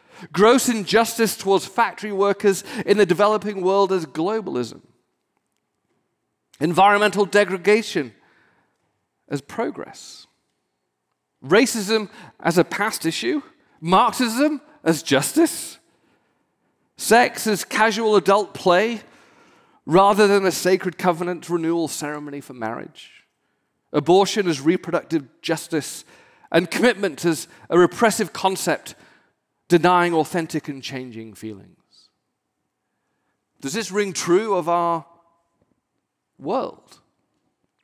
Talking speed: 95 wpm